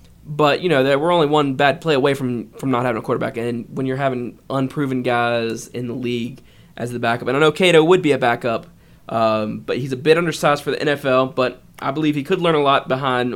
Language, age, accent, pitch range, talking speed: English, 20-39, American, 120-150 Hz, 240 wpm